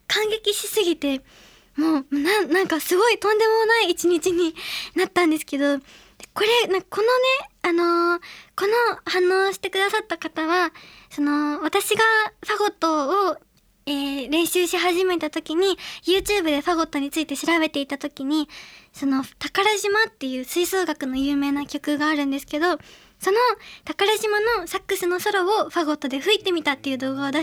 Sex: male